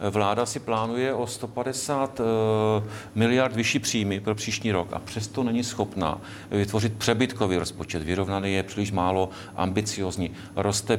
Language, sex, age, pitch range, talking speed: Czech, male, 40-59, 100-120 Hz, 135 wpm